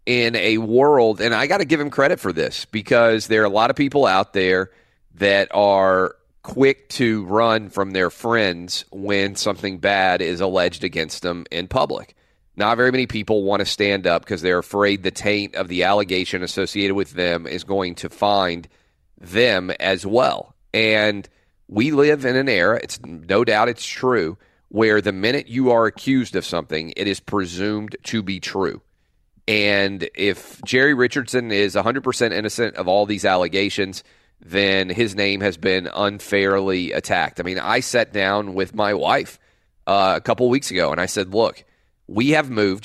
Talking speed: 180 wpm